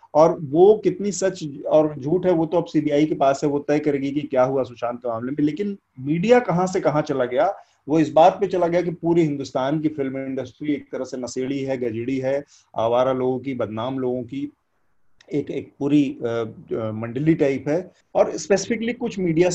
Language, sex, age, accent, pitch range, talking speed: Hindi, male, 30-49, native, 130-180 Hz, 205 wpm